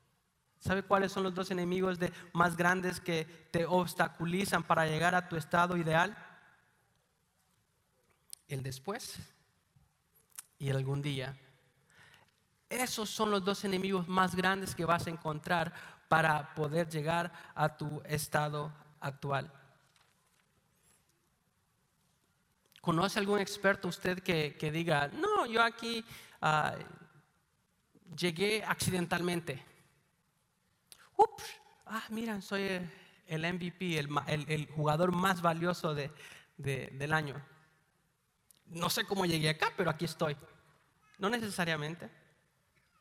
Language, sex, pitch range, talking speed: English, male, 155-185 Hz, 110 wpm